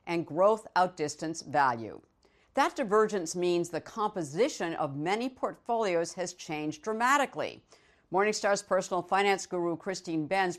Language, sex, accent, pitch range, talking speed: English, female, American, 160-205 Hz, 120 wpm